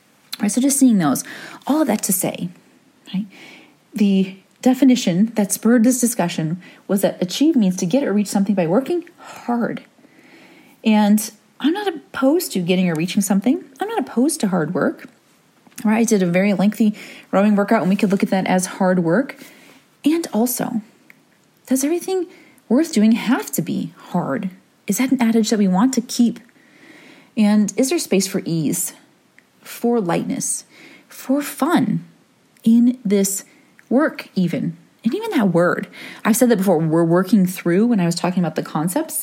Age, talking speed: 30-49, 170 wpm